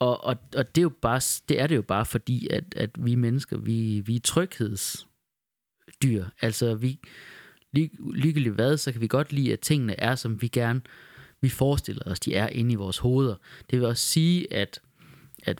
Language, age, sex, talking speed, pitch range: Danish, 30-49, male, 200 wpm, 105-130 Hz